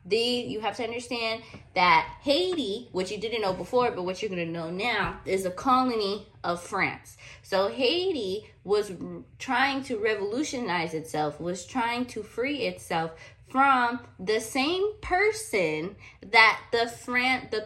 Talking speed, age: 150 wpm, 20-39